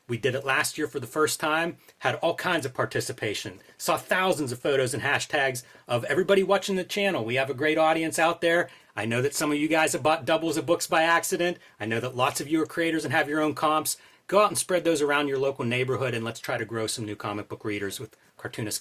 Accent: American